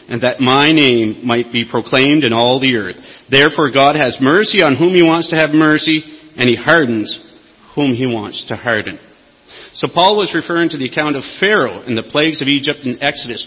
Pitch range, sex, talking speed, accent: 125-170 Hz, male, 205 wpm, American